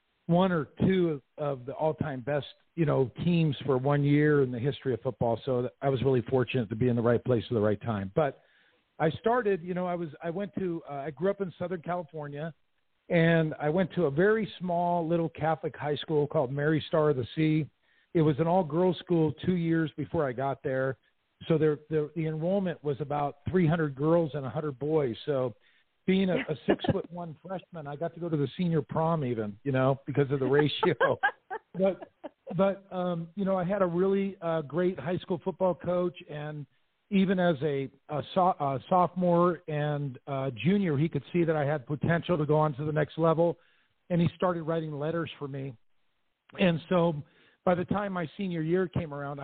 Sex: male